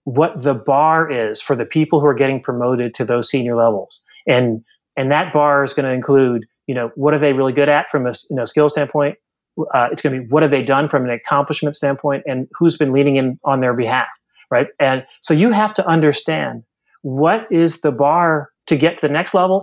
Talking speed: 230 wpm